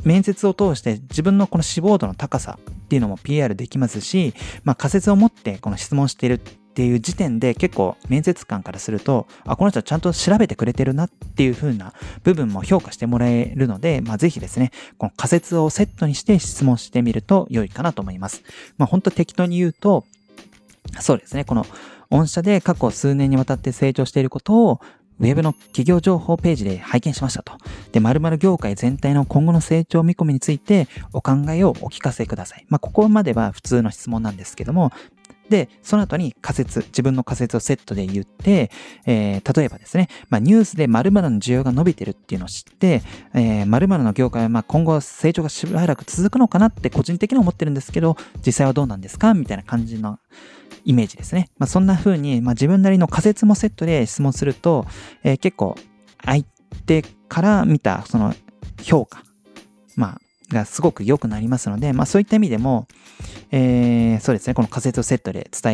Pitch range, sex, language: 115-175 Hz, male, Japanese